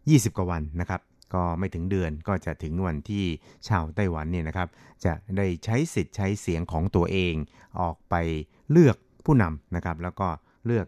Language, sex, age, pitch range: Thai, male, 60-79, 85-100 Hz